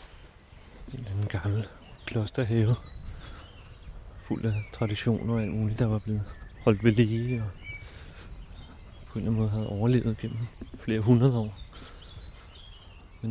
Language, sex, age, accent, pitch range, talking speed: Danish, male, 30-49, native, 90-110 Hz, 125 wpm